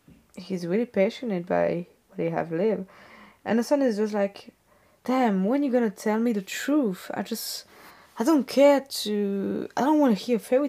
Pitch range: 175-230 Hz